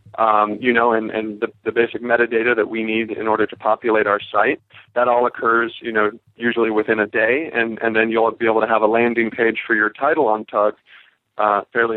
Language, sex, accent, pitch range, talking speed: English, male, American, 110-115 Hz, 225 wpm